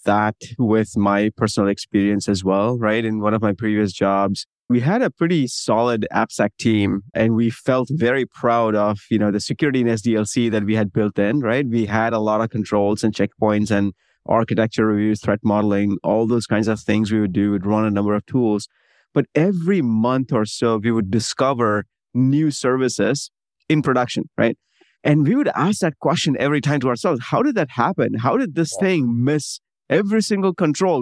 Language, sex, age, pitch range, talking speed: English, male, 20-39, 110-145 Hz, 195 wpm